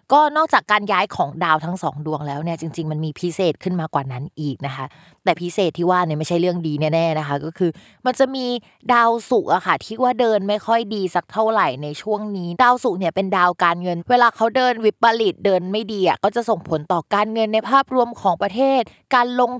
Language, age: Thai, 20-39